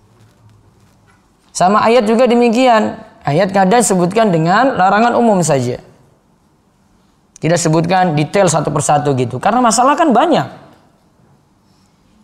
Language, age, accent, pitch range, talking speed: Indonesian, 20-39, native, 155-250 Hz, 105 wpm